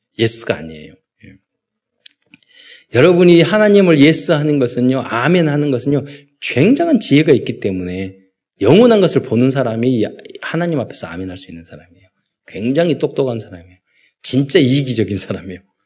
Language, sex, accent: Korean, male, native